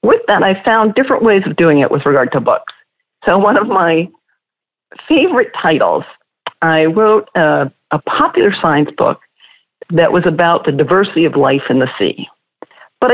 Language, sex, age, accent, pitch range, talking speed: English, female, 50-69, American, 165-230 Hz, 170 wpm